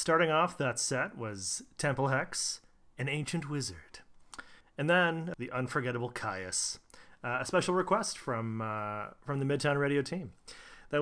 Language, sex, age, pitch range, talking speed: English, male, 30-49, 110-145 Hz, 145 wpm